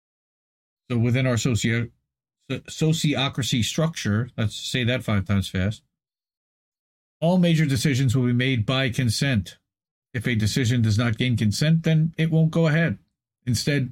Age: 40-59